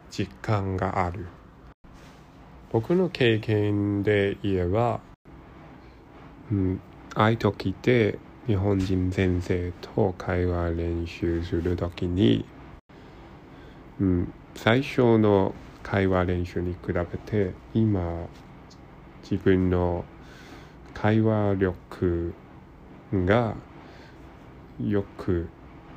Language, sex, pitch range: Japanese, male, 85-110 Hz